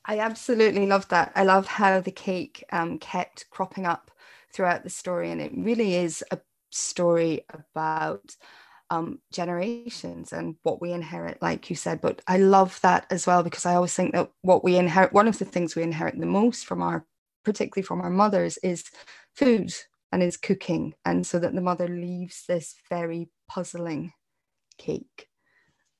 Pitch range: 175-210 Hz